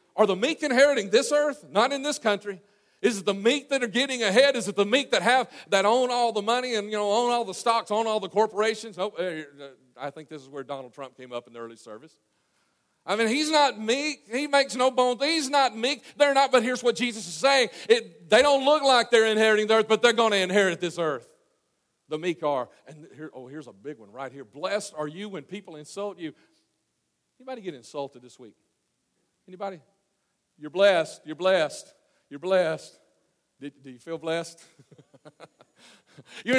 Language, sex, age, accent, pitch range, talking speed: English, male, 40-59, American, 145-240 Hz, 205 wpm